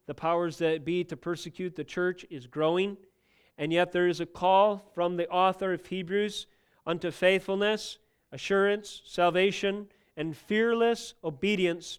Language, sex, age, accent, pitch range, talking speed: English, male, 40-59, American, 155-195 Hz, 140 wpm